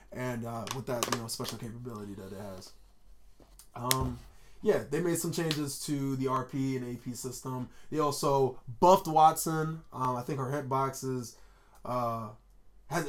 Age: 20-39